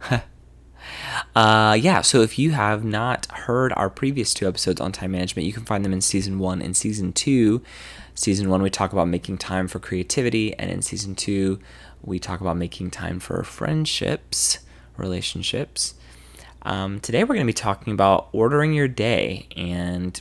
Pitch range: 85-105 Hz